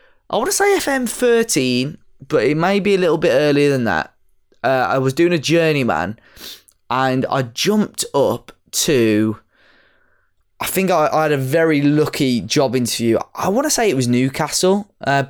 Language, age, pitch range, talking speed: English, 10-29, 115-155 Hz, 175 wpm